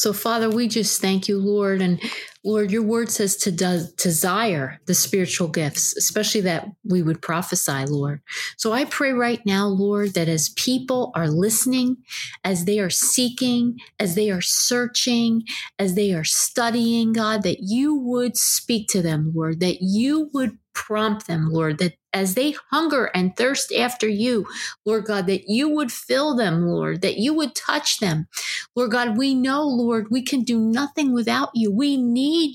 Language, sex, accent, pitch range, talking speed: English, female, American, 195-260 Hz, 175 wpm